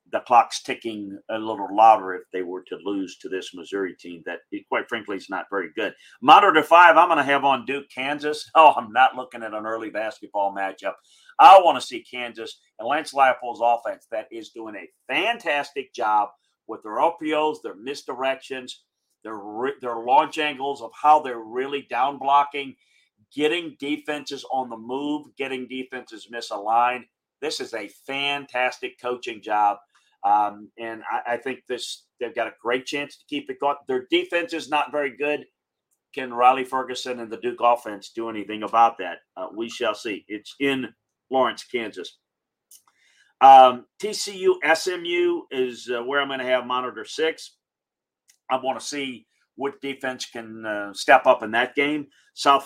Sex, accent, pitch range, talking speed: male, American, 115-145 Hz, 170 wpm